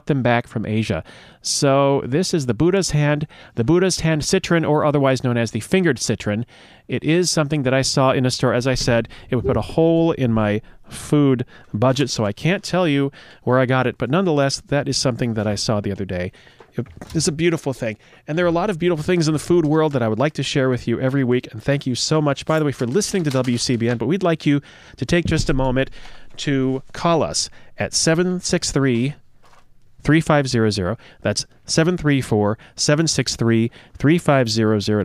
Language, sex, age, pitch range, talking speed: English, male, 30-49, 120-160 Hz, 205 wpm